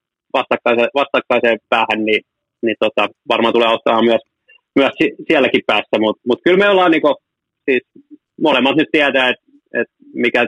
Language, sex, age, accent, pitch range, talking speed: Finnish, male, 20-39, native, 115-135 Hz, 145 wpm